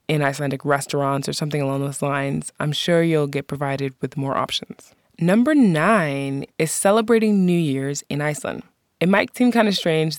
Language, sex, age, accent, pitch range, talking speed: English, female, 20-39, American, 140-185 Hz, 175 wpm